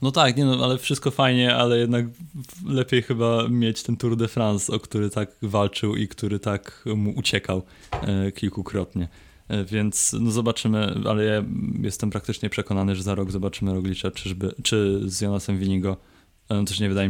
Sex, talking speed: male, 175 wpm